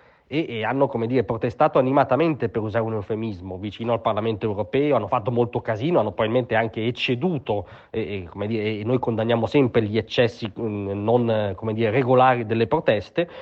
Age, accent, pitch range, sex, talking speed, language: 30-49, native, 115-145 Hz, male, 175 wpm, Italian